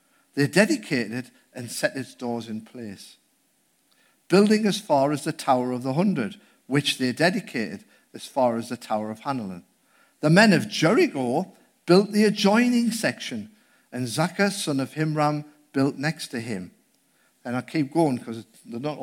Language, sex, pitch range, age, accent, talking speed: English, male, 140-210 Hz, 50-69, British, 160 wpm